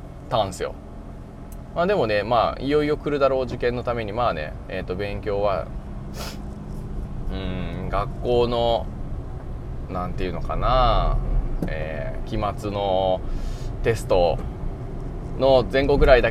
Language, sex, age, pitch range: Japanese, male, 20-39, 90-135 Hz